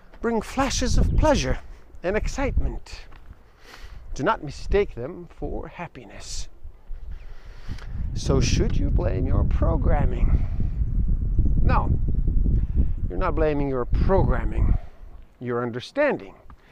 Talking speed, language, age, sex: 95 wpm, English, 50-69, male